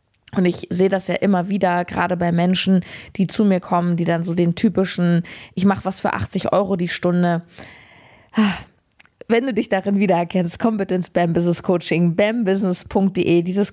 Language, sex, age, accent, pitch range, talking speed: German, female, 20-39, German, 175-195 Hz, 175 wpm